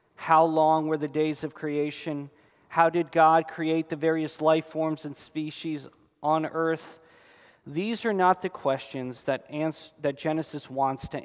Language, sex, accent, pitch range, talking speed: English, male, American, 140-175 Hz, 160 wpm